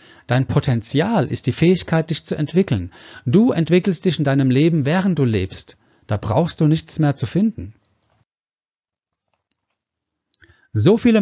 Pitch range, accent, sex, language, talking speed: 115-170 Hz, German, male, German, 140 wpm